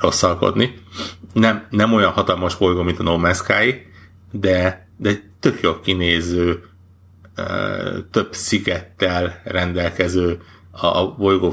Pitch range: 90-95 Hz